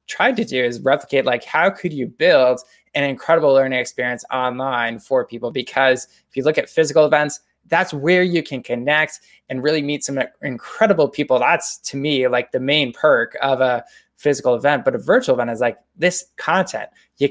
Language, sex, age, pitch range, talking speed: English, male, 20-39, 130-155 Hz, 190 wpm